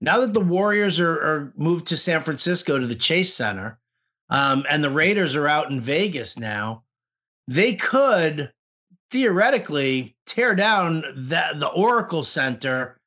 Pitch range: 135-180 Hz